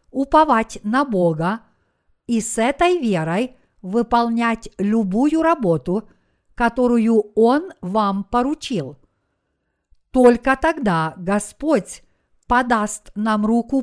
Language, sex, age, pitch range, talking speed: Russian, female, 50-69, 195-260 Hz, 85 wpm